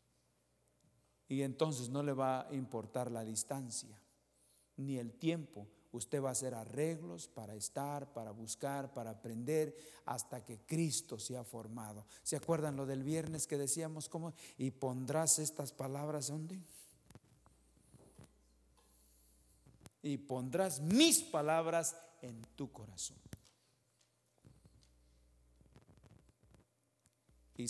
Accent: Mexican